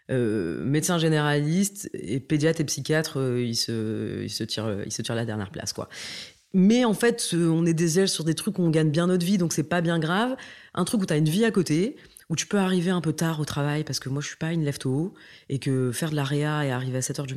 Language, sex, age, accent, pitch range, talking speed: French, female, 20-39, French, 130-175 Hz, 275 wpm